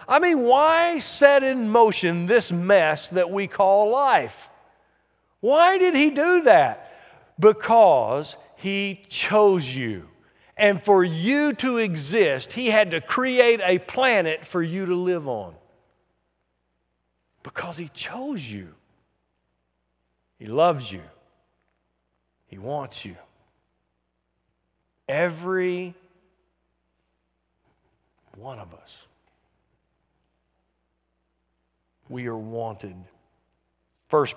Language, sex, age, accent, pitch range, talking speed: English, male, 50-69, American, 140-200 Hz, 95 wpm